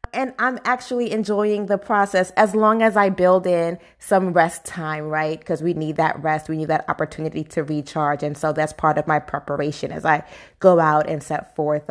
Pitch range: 155-190 Hz